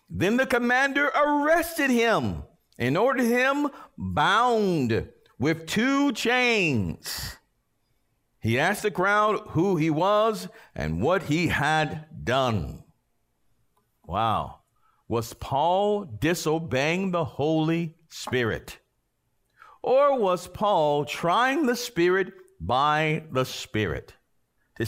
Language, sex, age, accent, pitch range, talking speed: English, male, 50-69, American, 120-190 Hz, 100 wpm